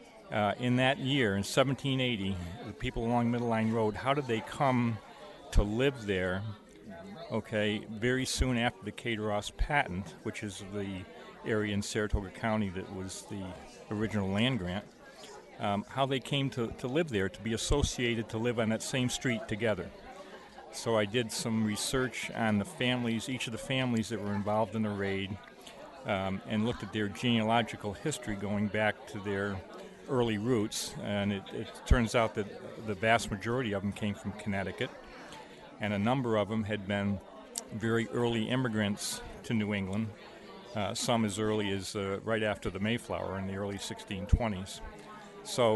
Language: English